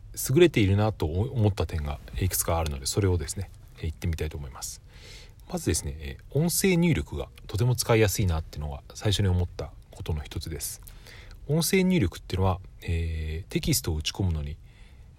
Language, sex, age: Japanese, male, 40-59